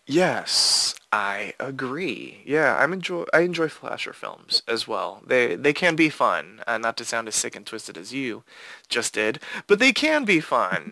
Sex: male